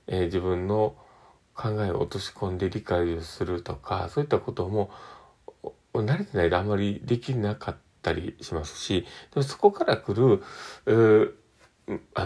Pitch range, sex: 90-120 Hz, male